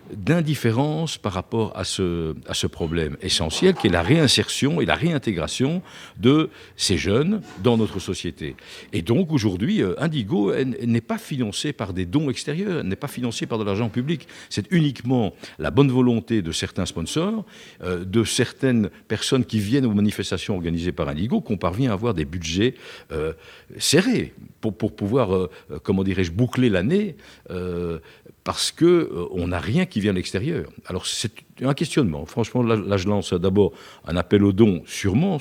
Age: 60-79